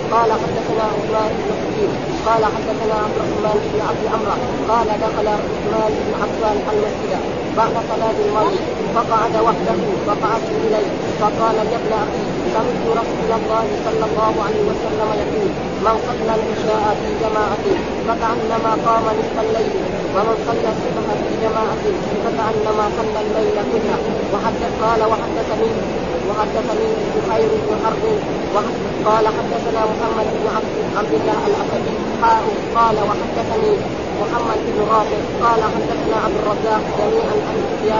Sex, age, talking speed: female, 20-39, 115 wpm